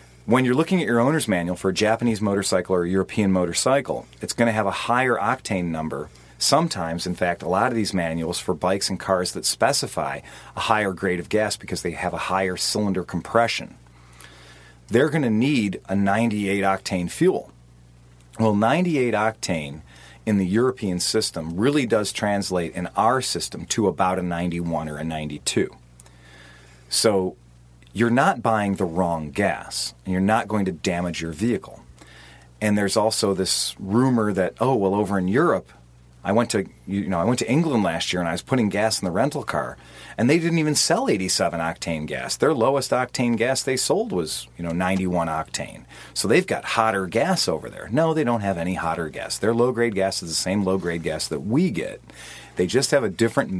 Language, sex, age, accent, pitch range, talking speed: English, male, 40-59, American, 80-110 Hz, 190 wpm